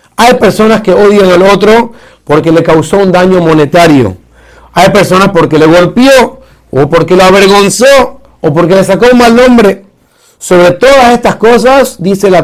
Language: Spanish